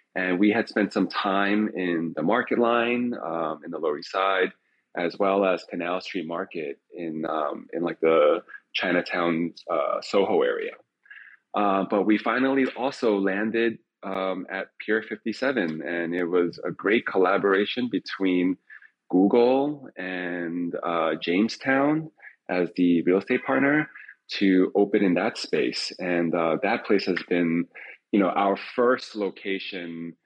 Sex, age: male, 30-49